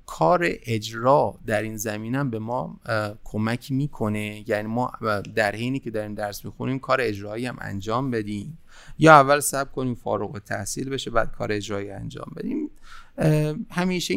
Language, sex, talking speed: Persian, male, 155 wpm